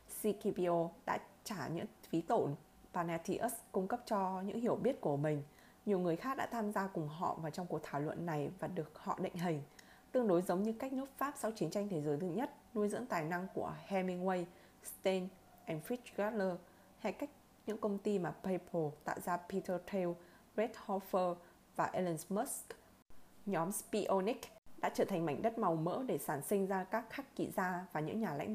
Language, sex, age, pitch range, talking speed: Vietnamese, female, 20-39, 175-220 Hz, 195 wpm